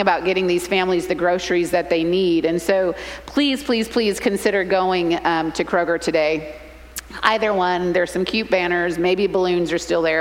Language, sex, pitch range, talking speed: English, female, 170-205 Hz, 180 wpm